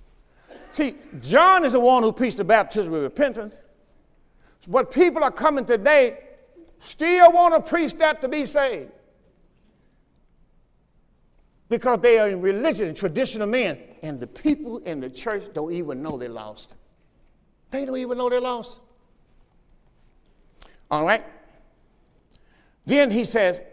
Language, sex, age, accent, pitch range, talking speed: English, male, 50-69, American, 210-300 Hz, 140 wpm